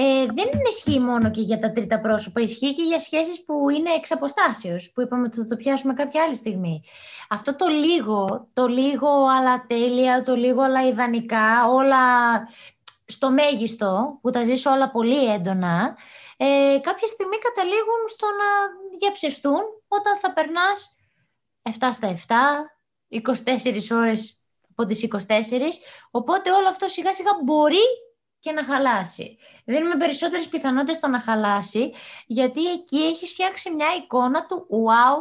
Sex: female